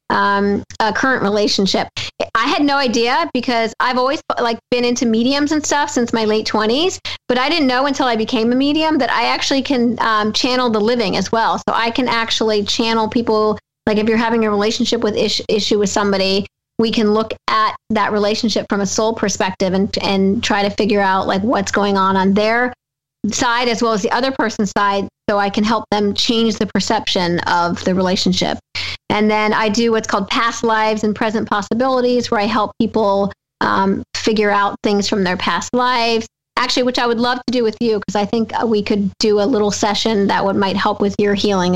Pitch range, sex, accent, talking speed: 205-235 Hz, female, American, 210 wpm